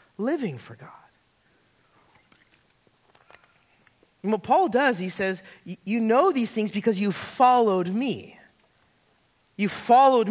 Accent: American